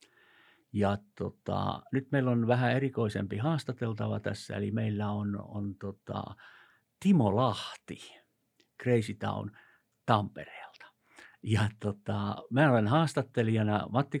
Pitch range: 105-125 Hz